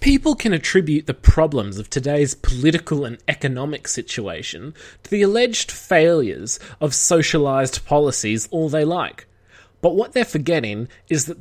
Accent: Australian